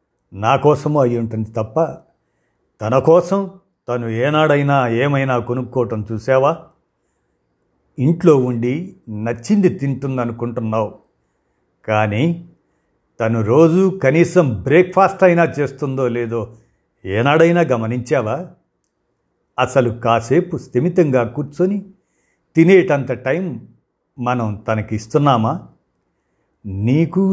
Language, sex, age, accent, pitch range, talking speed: Telugu, male, 50-69, native, 115-165 Hz, 80 wpm